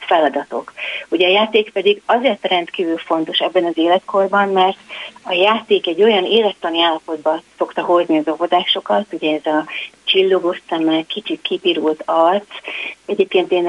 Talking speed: 140 wpm